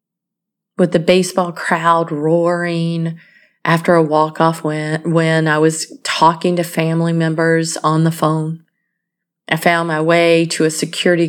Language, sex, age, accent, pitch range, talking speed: English, female, 30-49, American, 165-205 Hz, 135 wpm